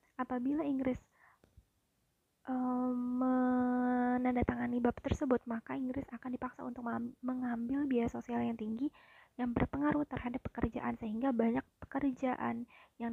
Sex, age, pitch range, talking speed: female, 20-39, 235-255 Hz, 110 wpm